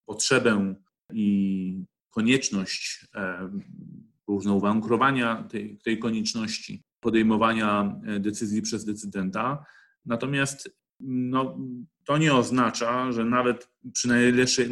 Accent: native